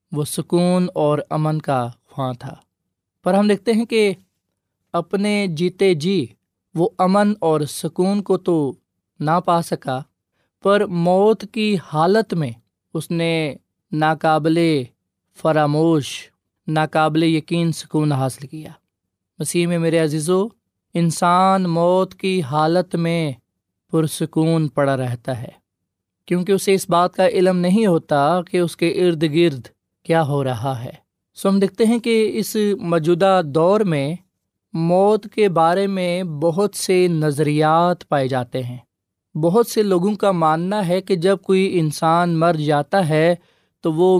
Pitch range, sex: 145-180 Hz, male